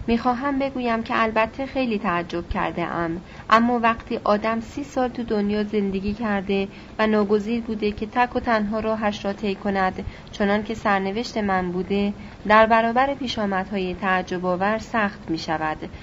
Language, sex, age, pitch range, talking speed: Persian, female, 30-49, 190-230 Hz, 155 wpm